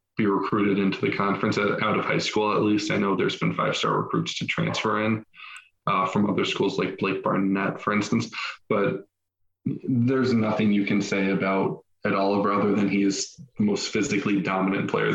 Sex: male